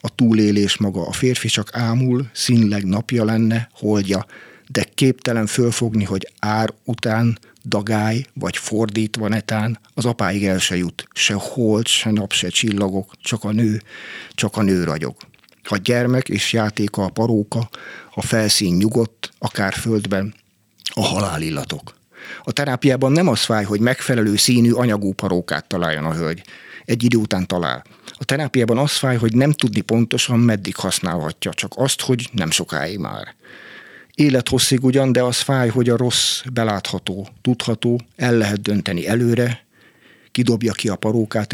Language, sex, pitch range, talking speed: Hungarian, male, 100-120 Hz, 150 wpm